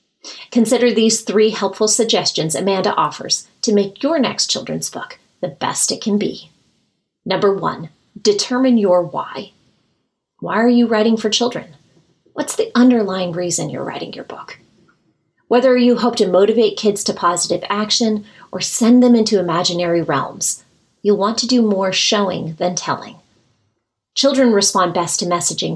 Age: 30-49